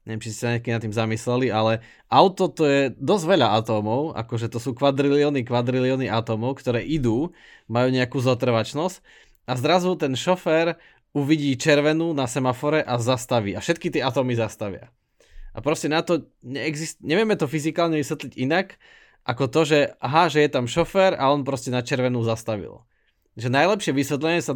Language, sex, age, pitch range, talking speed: Slovak, male, 20-39, 120-150 Hz, 165 wpm